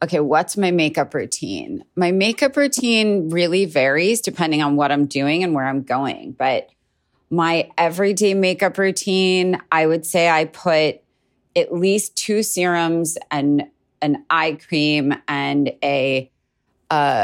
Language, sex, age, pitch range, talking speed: English, female, 30-49, 145-170 Hz, 140 wpm